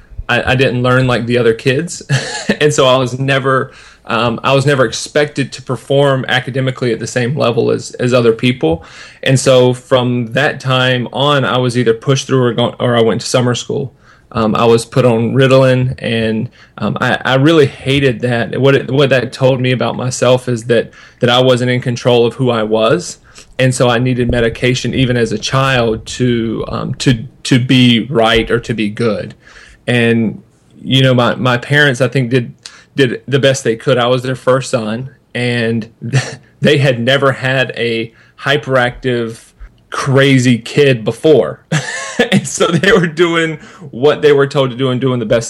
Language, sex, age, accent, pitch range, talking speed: English, male, 30-49, American, 120-135 Hz, 190 wpm